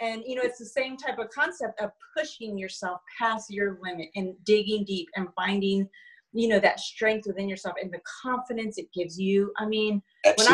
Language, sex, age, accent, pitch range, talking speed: English, female, 30-49, American, 200-290 Hz, 200 wpm